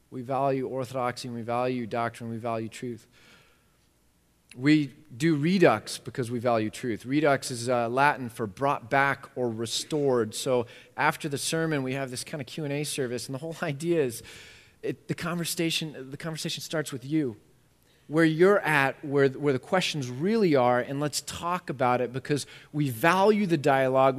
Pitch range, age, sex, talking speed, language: 110-150 Hz, 30-49, male, 175 wpm, English